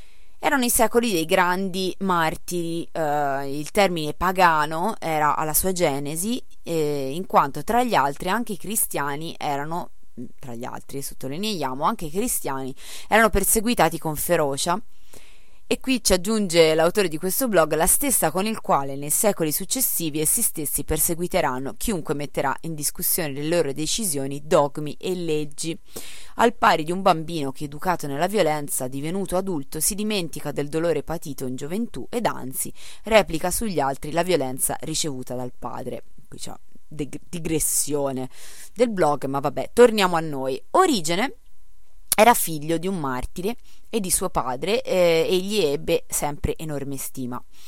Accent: native